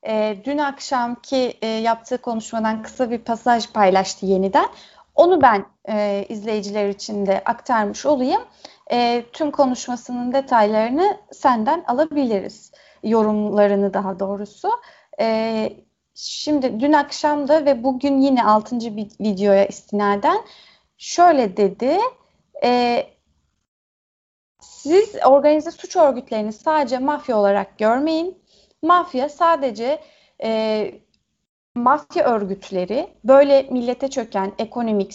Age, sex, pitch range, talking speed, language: 30-49, female, 215-300 Hz, 100 wpm, Turkish